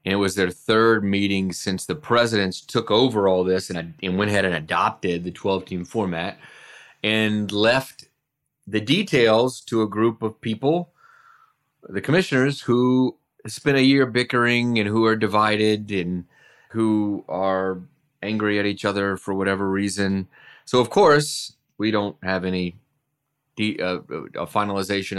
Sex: male